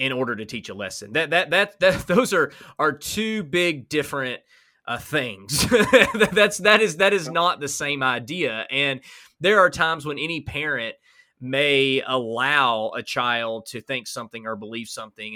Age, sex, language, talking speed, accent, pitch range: 20-39, male, English, 170 wpm, American, 120-175 Hz